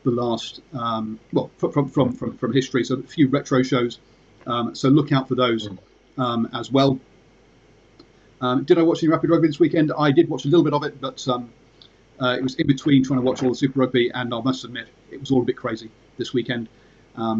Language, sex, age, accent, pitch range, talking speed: English, male, 30-49, British, 120-145 Hz, 230 wpm